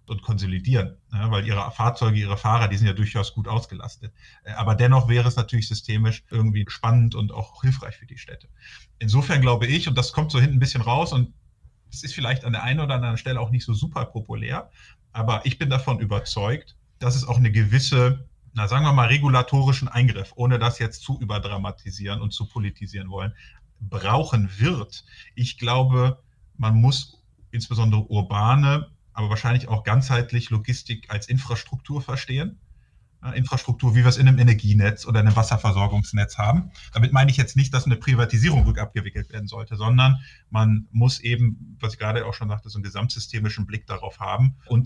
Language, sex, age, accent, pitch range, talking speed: German, male, 30-49, German, 110-125 Hz, 180 wpm